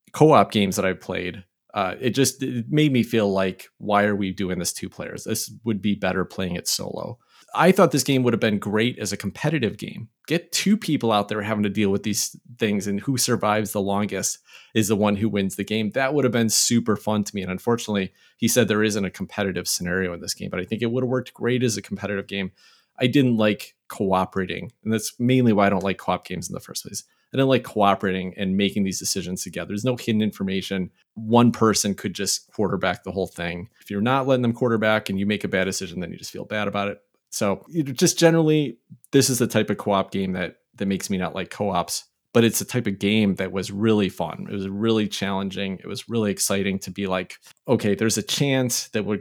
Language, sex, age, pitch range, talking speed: English, male, 30-49, 95-115 Hz, 240 wpm